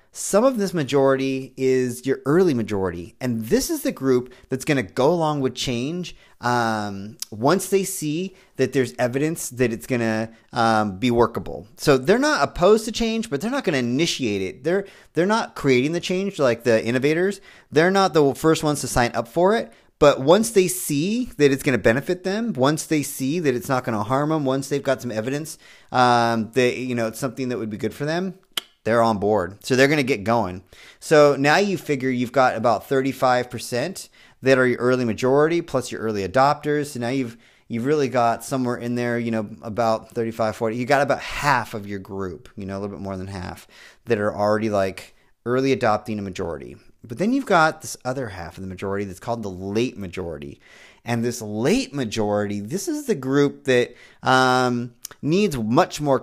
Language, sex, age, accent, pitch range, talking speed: English, male, 30-49, American, 115-175 Hz, 205 wpm